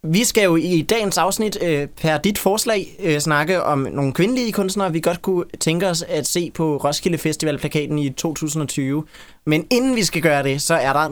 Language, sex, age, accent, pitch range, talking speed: Danish, male, 20-39, native, 140-170 Hz, 195 wpm